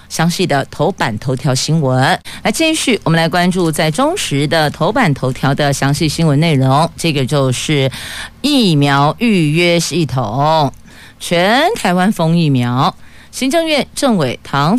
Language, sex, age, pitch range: Chinese, female, 50-69, 140-200 Hz